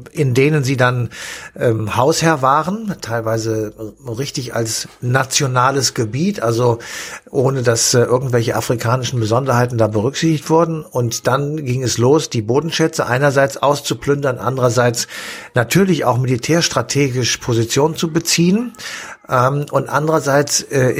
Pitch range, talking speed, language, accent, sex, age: 115-140 Hz, 120 wpm, German, German, male, 50-69